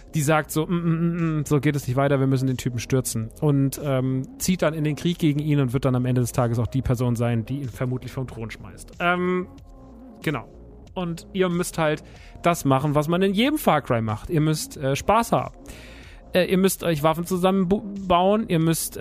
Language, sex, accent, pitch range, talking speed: German, male, German, 135-175 Hz, 210 wpm